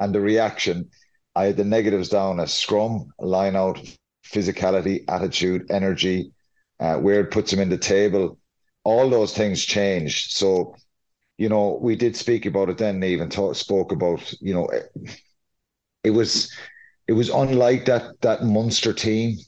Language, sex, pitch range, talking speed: English, male, 90-105 Hz, 165 wpm